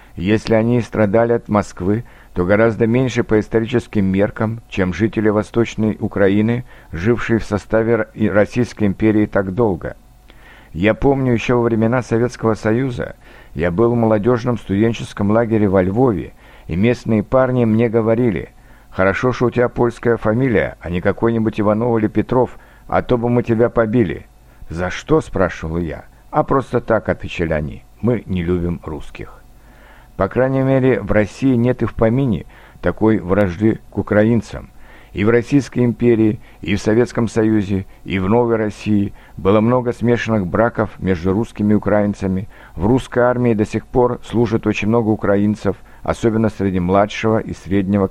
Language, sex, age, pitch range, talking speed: Russian, male, 60-79, 100-120 Hz, 155 wpm